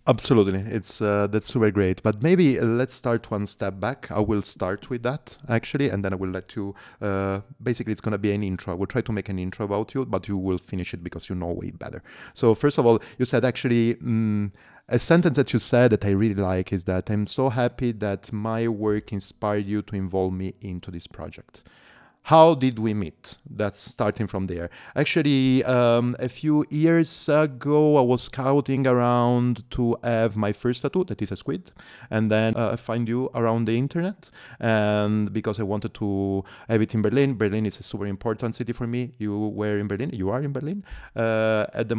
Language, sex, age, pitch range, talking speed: English, male, 30-49, 100-125 Hz, 210 wpm